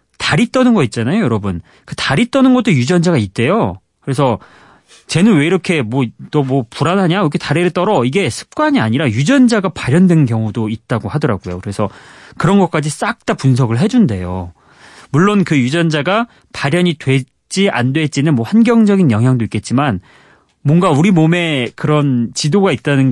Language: Korean